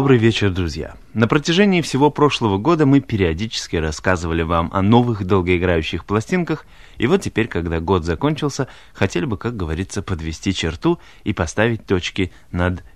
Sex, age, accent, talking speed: male, 20-39, native, 150 wpm